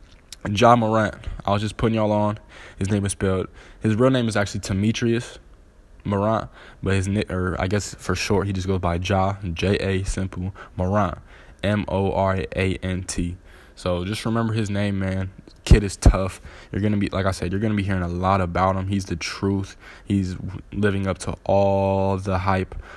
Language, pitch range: English, 90-100 Hz